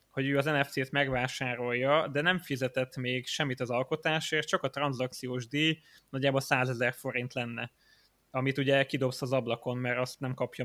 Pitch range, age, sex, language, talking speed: 130-145 Hz, 20-39, male, Hungarian, 170 wpm